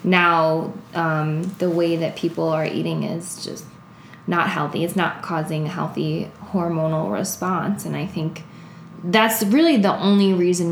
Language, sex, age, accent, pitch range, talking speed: English, female, 10-29, American, 165-210 Hz, 150 wpm